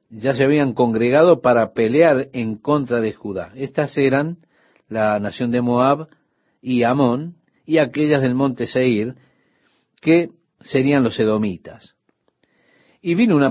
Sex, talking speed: male, 135 wpm